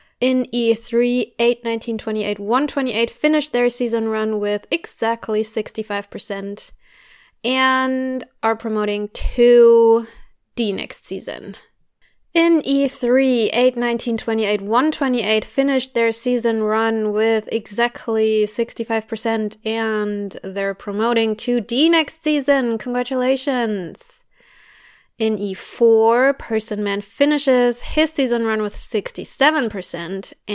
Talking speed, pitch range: 95 wpm, 210-260 Hz